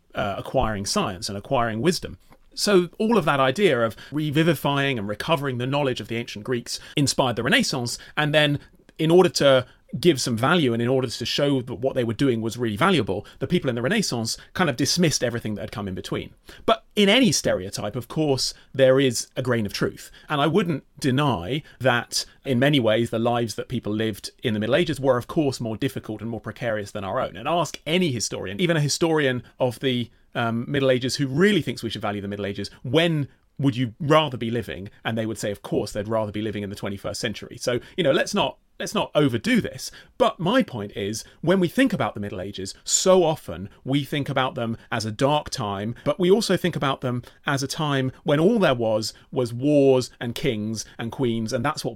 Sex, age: male, 30-49